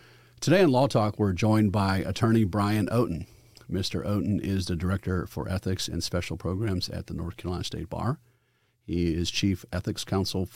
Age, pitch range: 40-59, 90-110 Hz